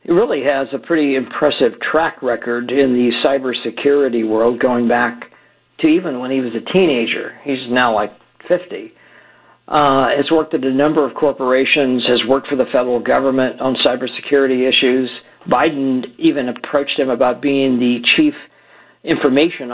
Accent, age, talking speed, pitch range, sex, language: American, 50-69, 155 wpm, 125-165 Hz, male, English